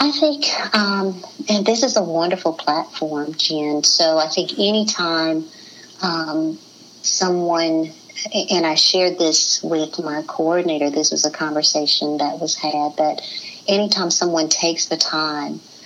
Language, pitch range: English, 160-185 Hz